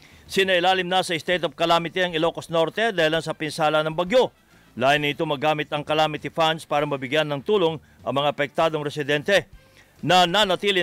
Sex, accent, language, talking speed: male, Filipino, English, 165 wpm